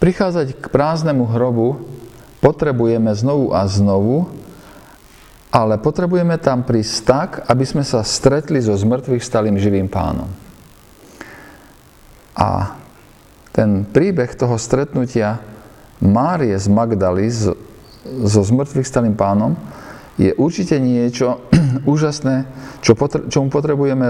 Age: 50-69